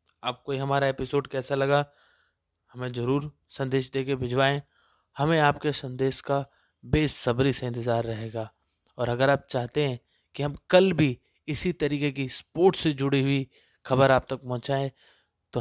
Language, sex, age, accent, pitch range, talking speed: Hindi, male, 20-39, native, 125-150 Hz, 155 wpm